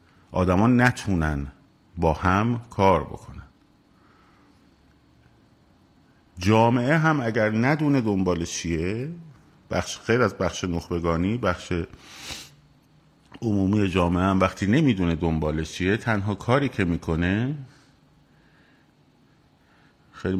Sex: male